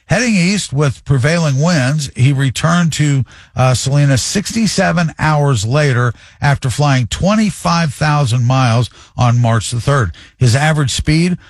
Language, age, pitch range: English, 50-69, 125-155 Hz